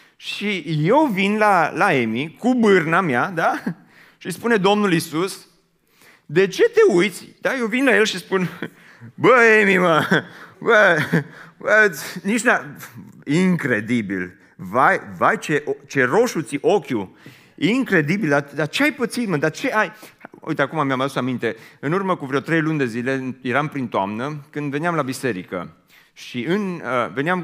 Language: Romanian